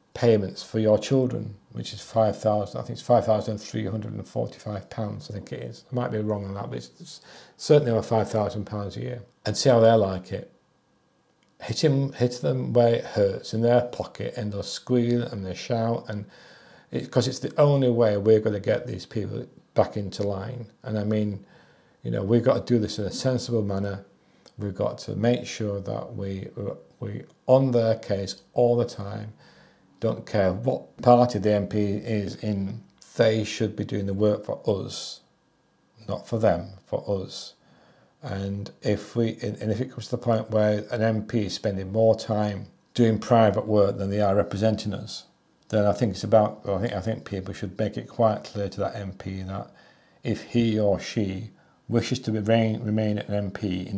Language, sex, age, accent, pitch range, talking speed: English, male, 40-59, British, 100-115 Hz, 190 wpm